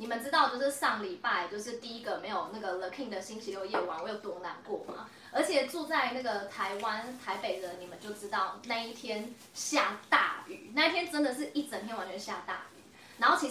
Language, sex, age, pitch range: Chinese, female, 20-39, 195-265 Hz